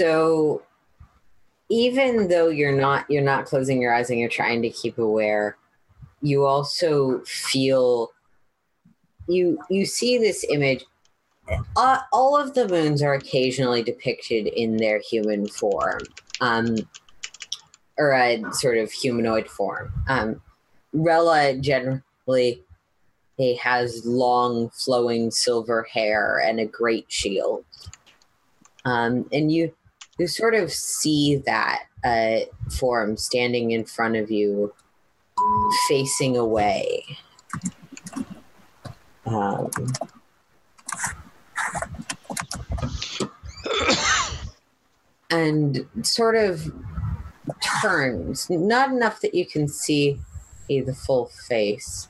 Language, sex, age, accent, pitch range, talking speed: English, female, 30-49, American, 110-155 Hz, 100 wpm